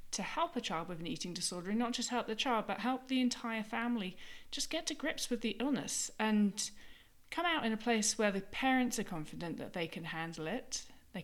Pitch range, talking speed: 185-235 Hz, 230 wpm